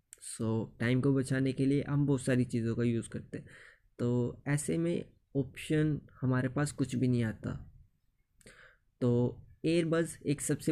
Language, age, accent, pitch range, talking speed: Hindi, 20-39, native, 120-140 Hz, 155 wpm